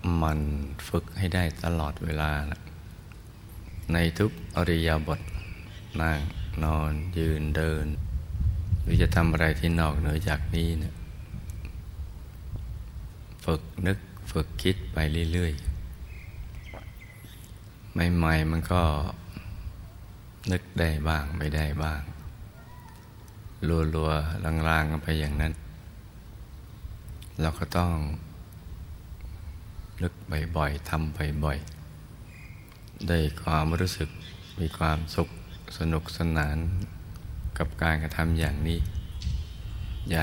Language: Thai